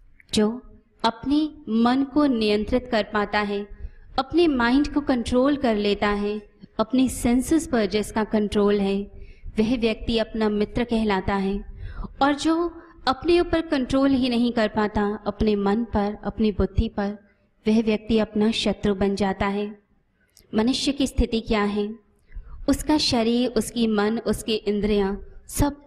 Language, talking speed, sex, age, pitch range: Hindi, 140 wpm, female, 20-39, 205-250 Hz